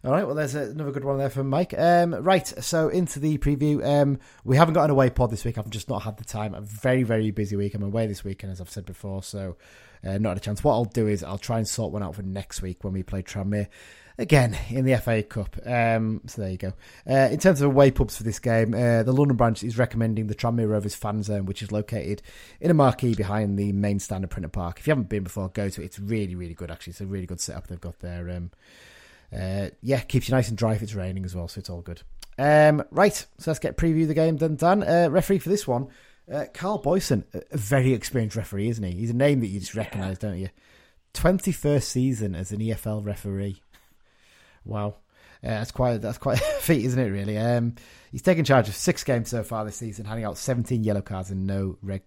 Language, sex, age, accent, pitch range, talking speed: English, male, 30-49, British, 100-135 Hz, 250 wpm